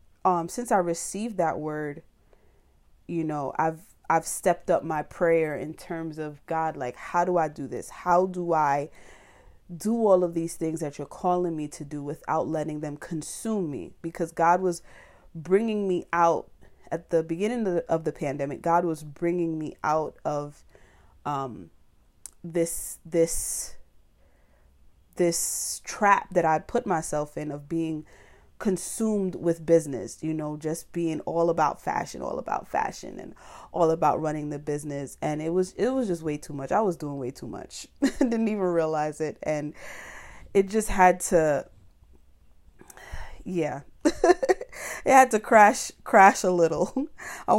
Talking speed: 160 wpm